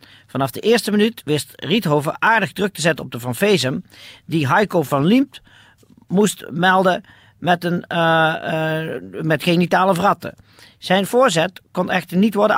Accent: Dutch